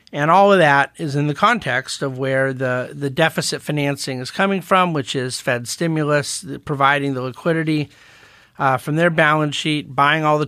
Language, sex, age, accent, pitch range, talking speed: English, male, 50-69, American, 140-170 Hz, 190 wpm